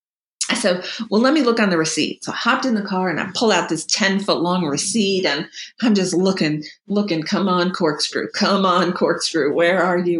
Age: 40-59